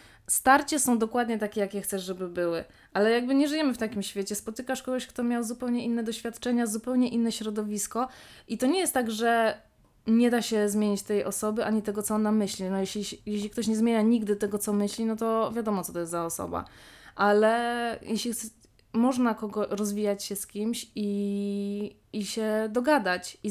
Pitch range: 190-235 Hz